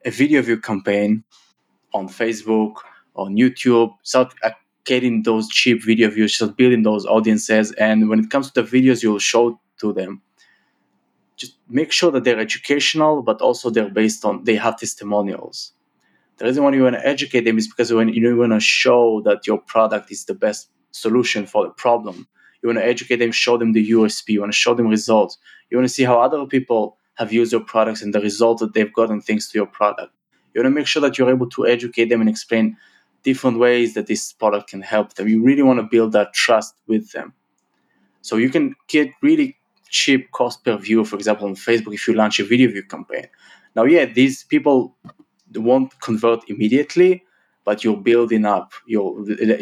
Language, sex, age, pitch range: English, male, 20-39, 110-125 Hz